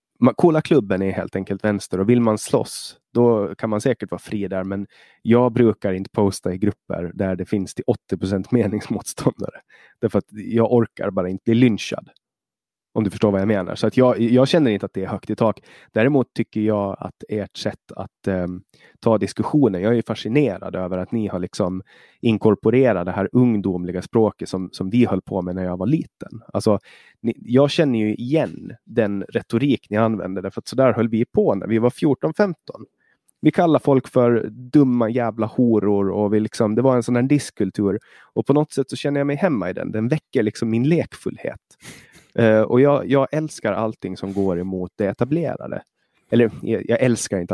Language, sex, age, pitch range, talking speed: Swedish, male, 20-39, 100-125 Hz, 195 wpm